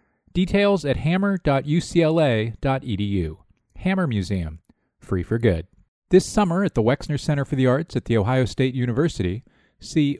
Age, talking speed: 40-59, 135 wpm